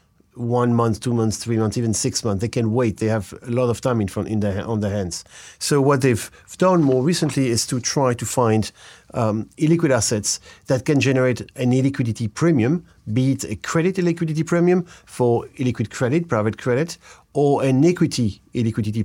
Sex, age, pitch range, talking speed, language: male, 50-69, 110-135 Hz, 185 wpm, English